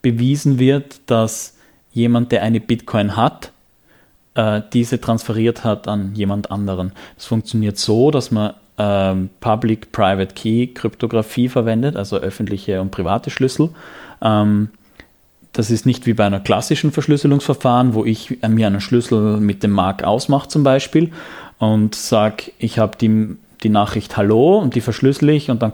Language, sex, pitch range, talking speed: German, male, 105-130 Hz, 145 wpm